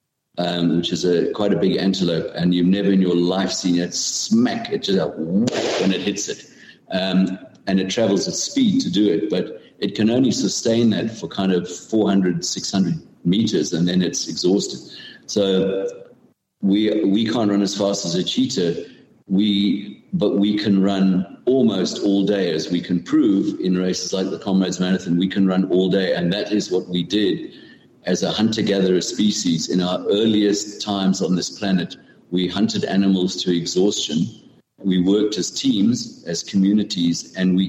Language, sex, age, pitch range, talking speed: English, male, 50-69, 90-100 Hz, 180 wpm